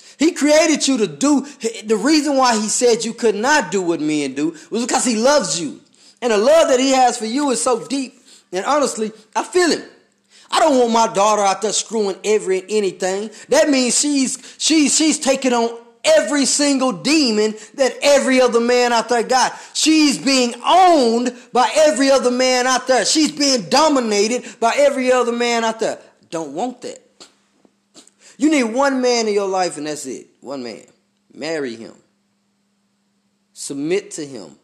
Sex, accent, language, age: male, American, English, 20-39